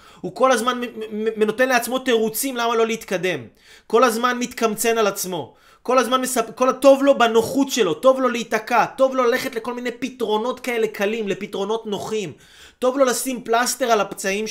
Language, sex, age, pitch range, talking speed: Hebrew, male, 30-49, 190-250 Hz, 165 wpm